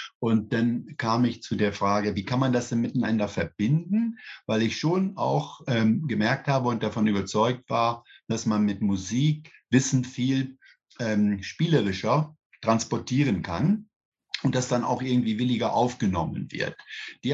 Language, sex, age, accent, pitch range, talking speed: German, male, 50-69, German, 105-135 Hz, 150 wpm